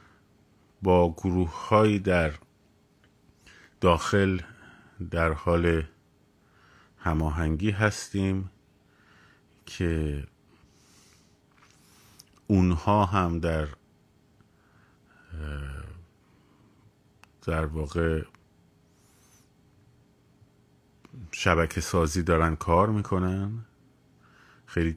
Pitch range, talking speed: 85-105 Hz, 45 wpm